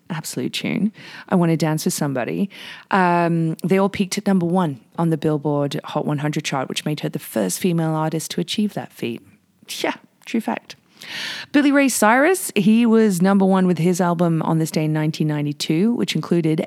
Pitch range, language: 155-200 Hz, English